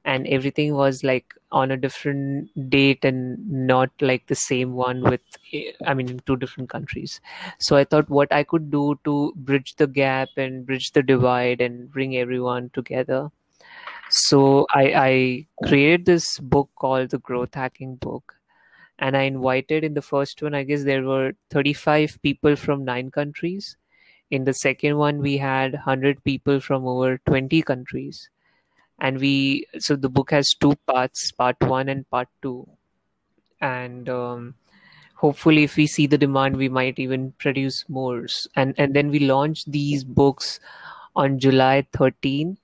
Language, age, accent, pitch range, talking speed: Hindi, 30-49, native, 130-145 Hz, 160 wpm